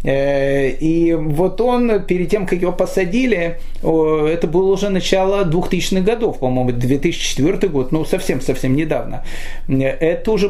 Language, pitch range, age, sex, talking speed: Russian, 140-195 Hz, 30-49, male, 125 wpm